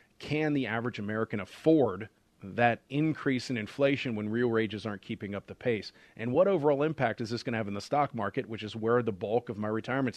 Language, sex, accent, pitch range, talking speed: English, male, American, 105-125 Hz, 225 wpm